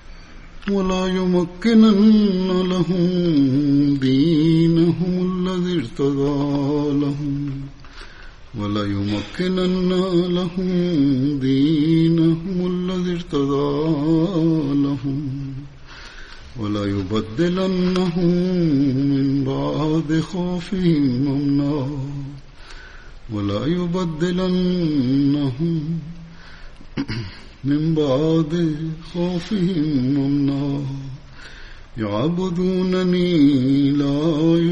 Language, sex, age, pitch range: Bulgarian, male, 50-69, 140-180 Hz